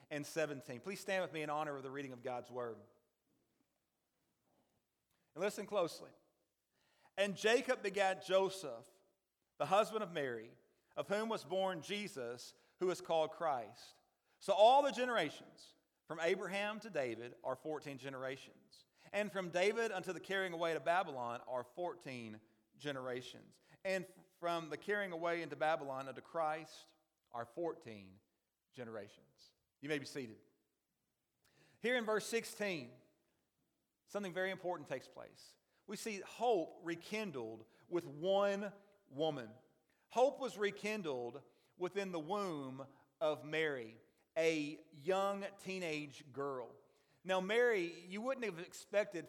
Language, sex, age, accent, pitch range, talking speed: English, male, 40-59, American, 145-200 Hz, 130 wpm